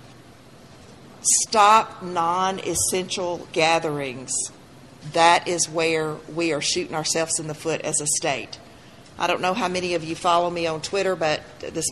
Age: 40-59